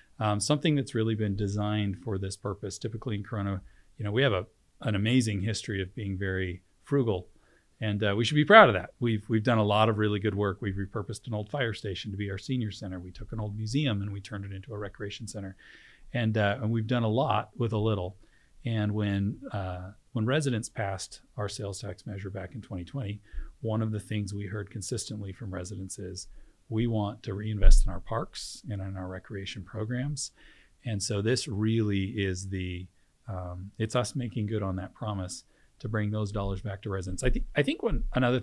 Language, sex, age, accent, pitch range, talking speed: English, male, 40-59, American, 100-110 Hz, 215 wpm